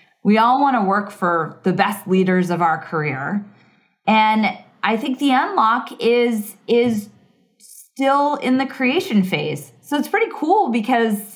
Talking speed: 155 wpm